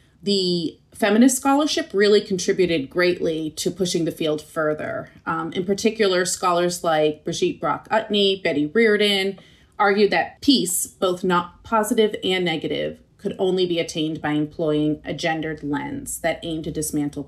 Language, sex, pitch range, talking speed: English, female, 155-205 Hz, 145 wpm